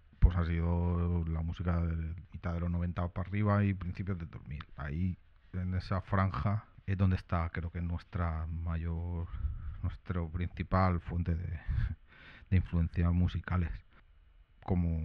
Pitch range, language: 85-95 Hz, Spanish